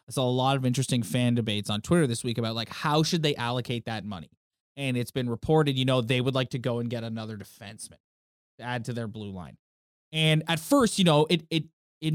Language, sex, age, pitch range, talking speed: English, male, 20-39, 120-155 Hz, 240 wpm